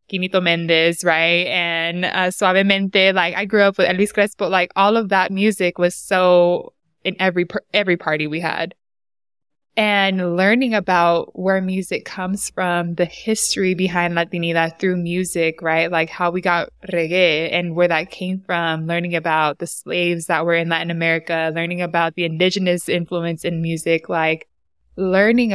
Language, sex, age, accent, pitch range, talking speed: English, female, 20-39, American, 165-185 Hz, 160 wpm